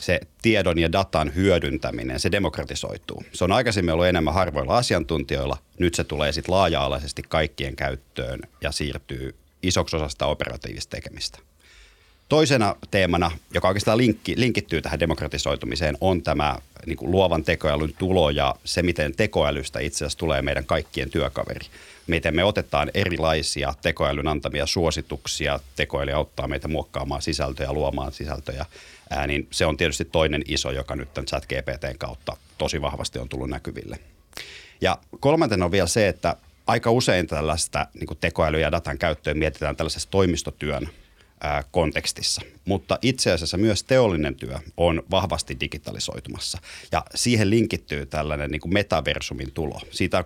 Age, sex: 30-49, male